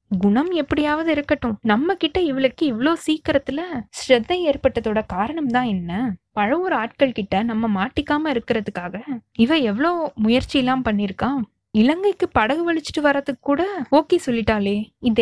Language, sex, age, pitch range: Tamil, female, 20-39, 210-280 Hz